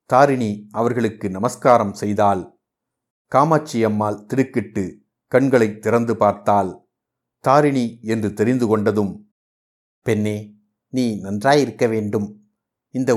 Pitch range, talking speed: 105-125 Hz, 80 wpm